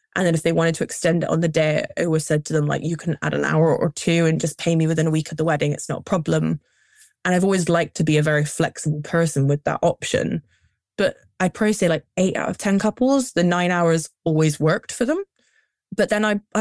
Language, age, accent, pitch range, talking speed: English, 10-29, British, 155-185 Hz, 260 wpm